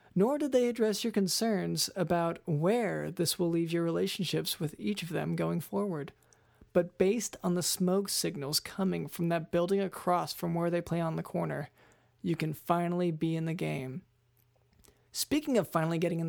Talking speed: 180 wpm